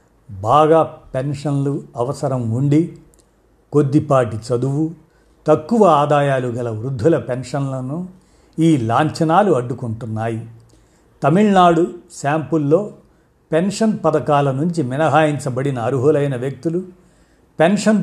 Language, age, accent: Telugu, 50-69, native